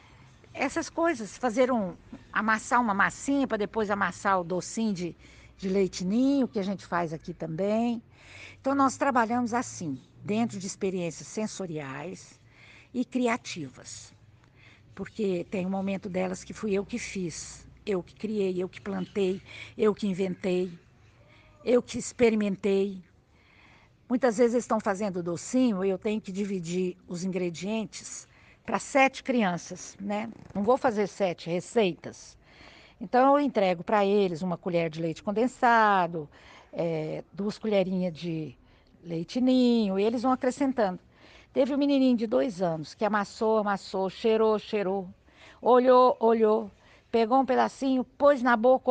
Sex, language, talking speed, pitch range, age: female, Portuguese, 140 wpm, 175-235 Hz, 50-69